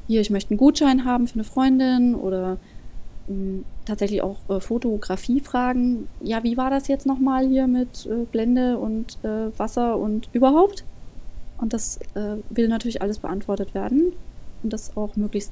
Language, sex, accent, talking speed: German, female, German, 165 wpm